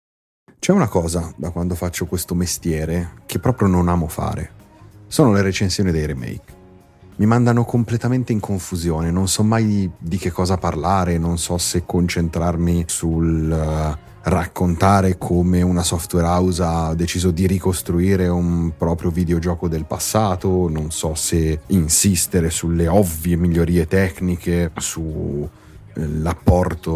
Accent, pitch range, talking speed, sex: native, 85-110 Hz, 130 wpm, male